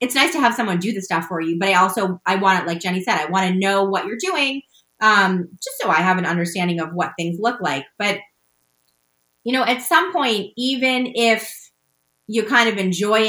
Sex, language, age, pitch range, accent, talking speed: female, English, 30-49, 185-230 Hz, American, 225 wpm